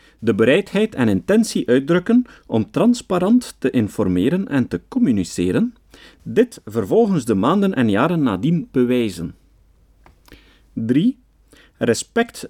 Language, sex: Dutch, male